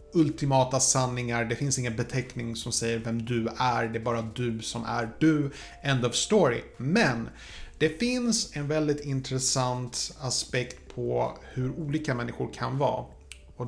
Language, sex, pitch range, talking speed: Swedish, male, 120-140 Hz, 155 wpm